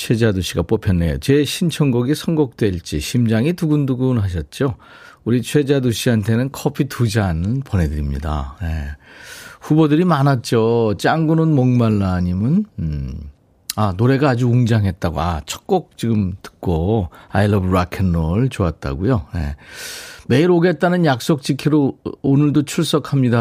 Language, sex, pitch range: Korean, male, 95-150 Hz